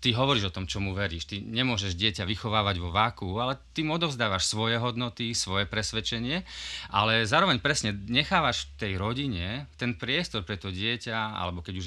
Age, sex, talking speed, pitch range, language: 30-49, male, 165 wpm, 100-120 Hz, Slovak